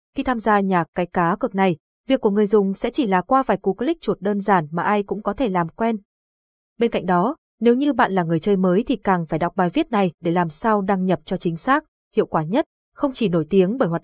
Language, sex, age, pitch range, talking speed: Vietnamese, female, 20-39, 180-230 Hz, 270 wpm